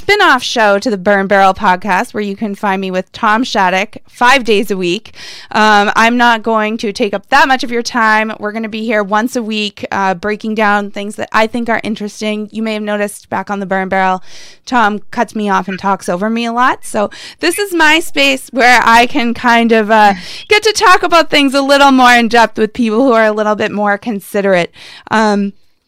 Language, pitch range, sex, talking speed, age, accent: English, 200-235 Hz, female, 225 wpm, 20-39, American